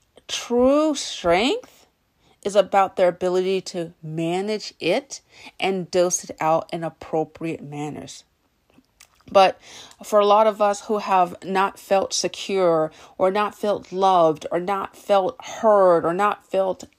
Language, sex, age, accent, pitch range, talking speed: English, female, 40-59, American, 180-230 Hz, 135 wpm